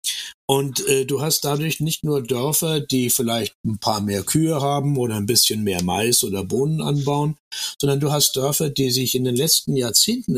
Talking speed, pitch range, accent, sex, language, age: 190 wpm, 120-145 Hz, German, male, German, 60-79